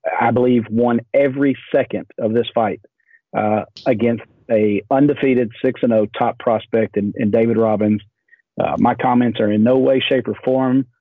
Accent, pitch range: American, 110-130 Hz